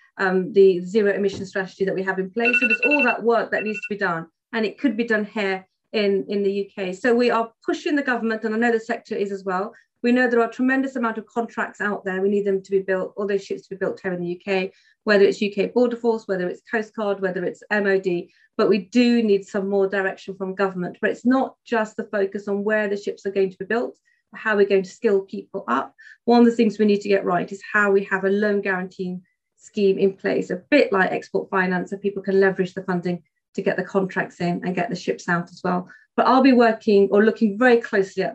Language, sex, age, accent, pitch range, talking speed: English, female, 40-59, British, 190-220 Hz, 255 wpm